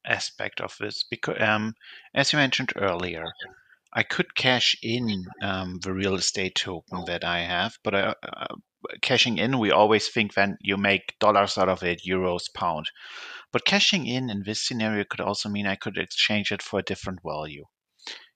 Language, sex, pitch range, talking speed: English, male, 90-110 Hz, 180 wpm